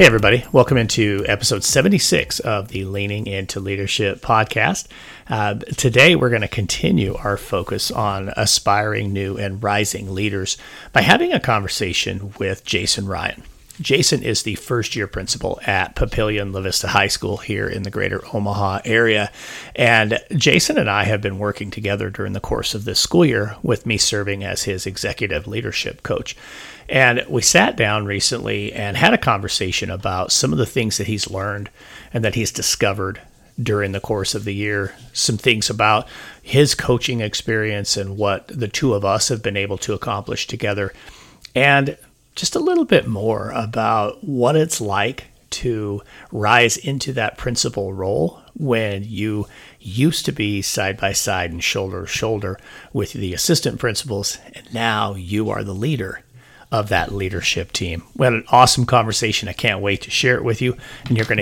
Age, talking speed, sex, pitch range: 40-59, 170 wpm, male, 100-120 Hz